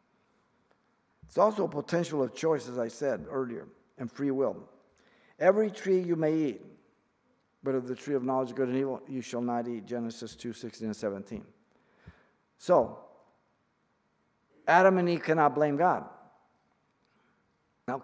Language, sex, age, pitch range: English, male, 50-69, 130-190 Hz